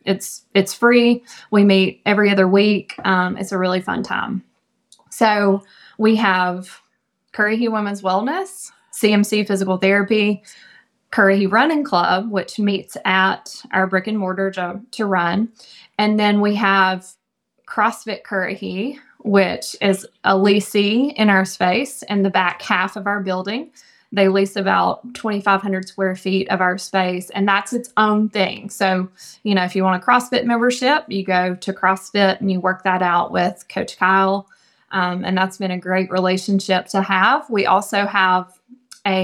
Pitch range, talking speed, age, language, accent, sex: 190-215 Hz, 160 wpm, 20-39, English, American, female